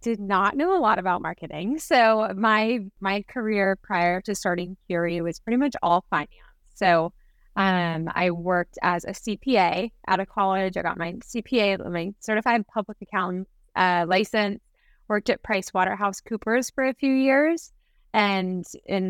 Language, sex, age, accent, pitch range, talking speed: English, female, 20-39, American, 175-215 Hz, 160 wpm